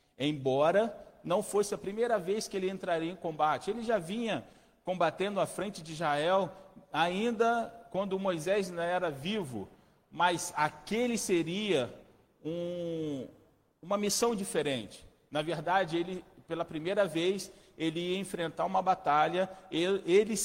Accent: Brazilian